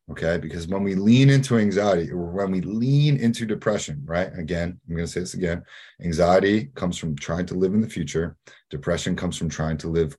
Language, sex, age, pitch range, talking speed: English, male, 30-49, 80-110 Hz, 210 wpm